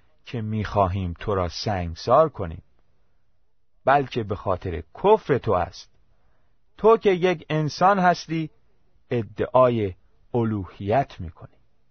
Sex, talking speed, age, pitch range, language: male, 105 wpm, 30-49, 95-160 Hz, Persian